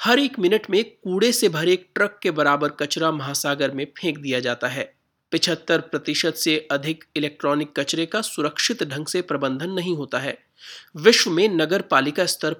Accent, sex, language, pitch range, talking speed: native, male, Hindi, 150-190 Hz, 135 wpm